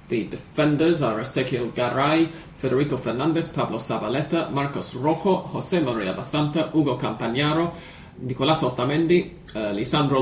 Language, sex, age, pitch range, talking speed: English, male, 30-49, 120-150 Hz, 115 wpm